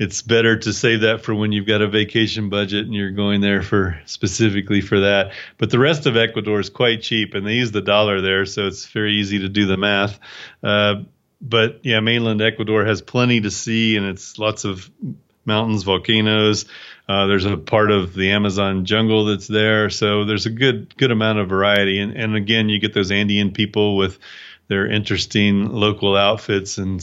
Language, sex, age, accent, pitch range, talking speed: English, male, 30-49, American, 100-110 Hz, 200 wpm